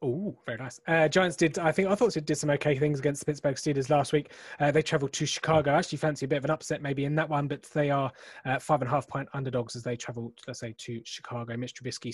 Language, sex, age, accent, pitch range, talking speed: English, male, 20-39, British, 125-150 Hz, 280 wpm